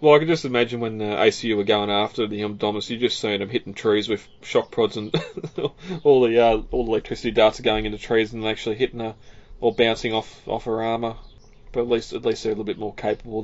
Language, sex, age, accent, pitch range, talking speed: English, male, 20-39, Australian, 105-120 Hz, 245 wpm